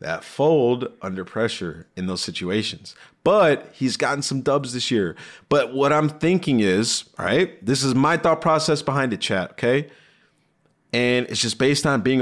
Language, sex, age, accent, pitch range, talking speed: English, male, 30-49, American, 115-145 Hz, 175 wpm